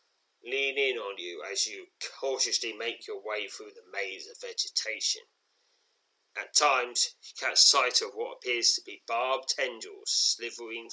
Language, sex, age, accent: English, male, 30-49, British